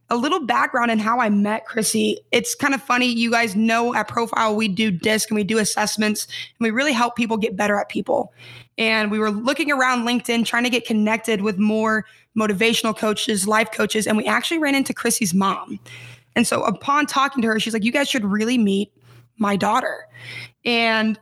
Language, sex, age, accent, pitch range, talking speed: English, female, 20-39, American, 215-245 Hz, 205 wpm